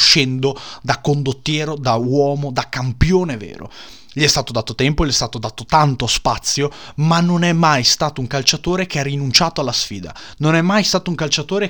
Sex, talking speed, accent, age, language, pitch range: male, 190 wpm, native, 20-39, Italian, 115-145 Hz